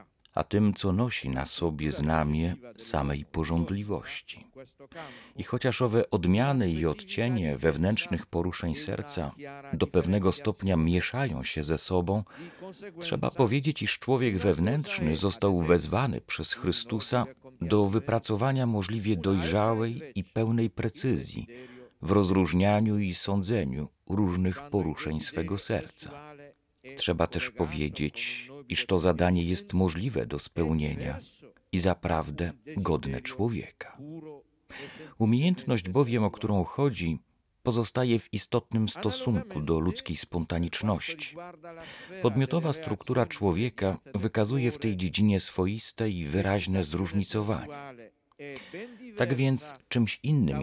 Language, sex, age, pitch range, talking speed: Polish, male, 40-59, 90-125 Hz, 105 wpm